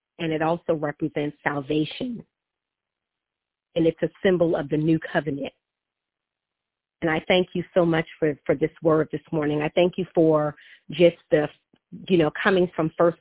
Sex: female